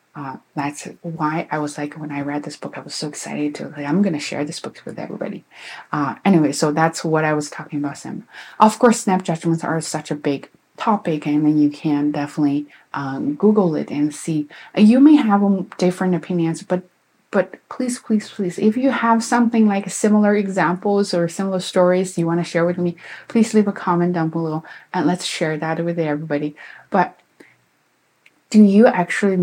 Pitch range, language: 150-210 Hz, English